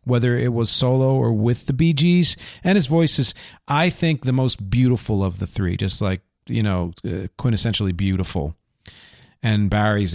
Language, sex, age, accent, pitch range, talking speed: English, male, 40-59, American, 95-130 Hz, 165 wpm